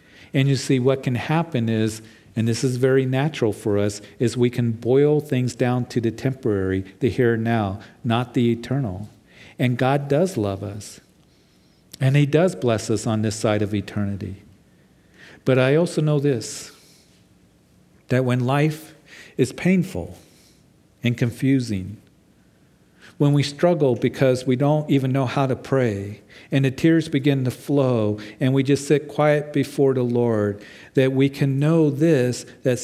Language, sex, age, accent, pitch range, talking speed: English, male, 50-69, American, 120-150 Hz, 160 wpm